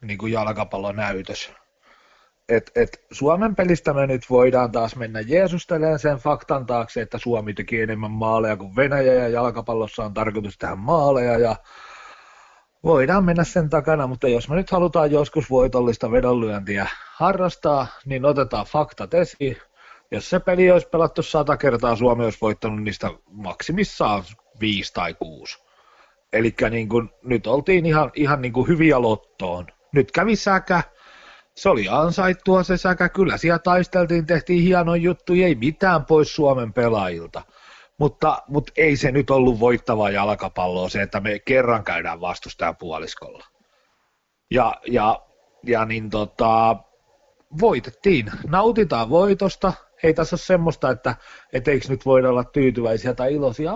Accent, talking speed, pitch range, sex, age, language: native, 140 wpm, 110-170 Hz, male, 40-59, Finnish